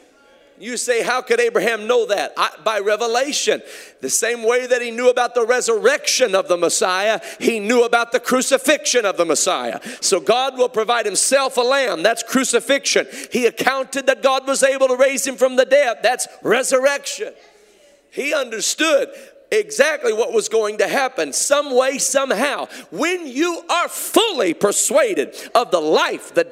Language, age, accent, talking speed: English, 40-59, American, 165 wpm